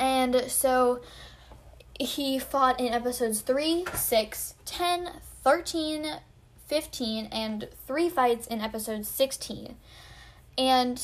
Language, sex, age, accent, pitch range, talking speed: English, female, 10-29, American, 225-275 Hz, 100 wpm